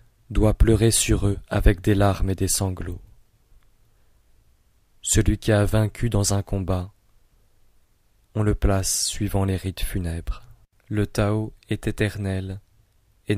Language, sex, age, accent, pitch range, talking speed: French, male, 20-39, French, 100-110 Hz, 130 wpm